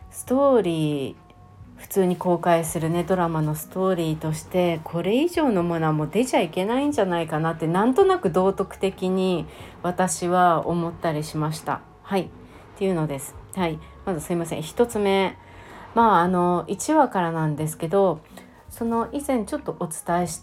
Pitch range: 160-225 Hz